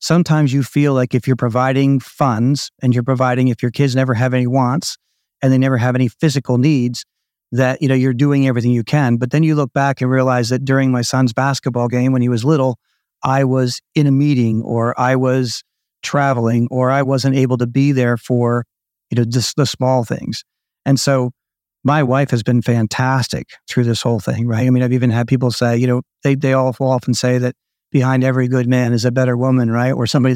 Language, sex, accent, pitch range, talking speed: English, male, American, 125-140 Hz, 220 wpm